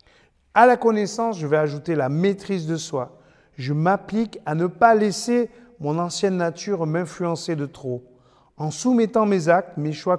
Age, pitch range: 40-59, 145-205 Hz